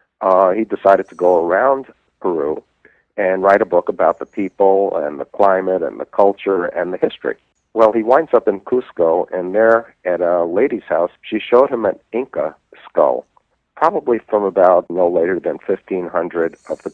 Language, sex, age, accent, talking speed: English, male, 50-69, American, 175 wpm